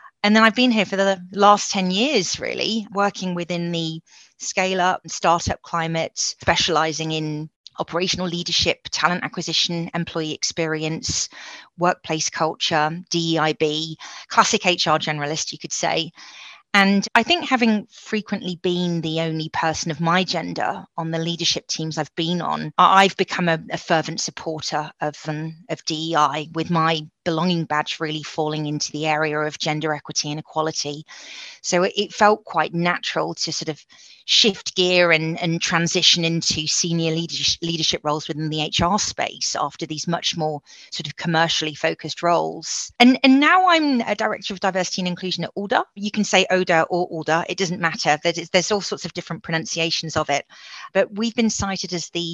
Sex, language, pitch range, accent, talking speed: female, English, 160-190 Hz, British, 165 wpm